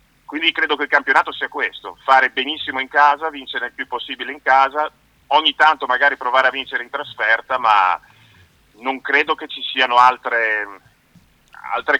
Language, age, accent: Italian, 40-59, native